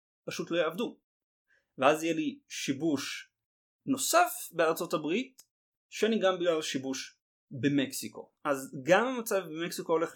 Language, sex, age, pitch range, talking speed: Hebrew, male, 30-49, 145-230 Hz, 110 wpm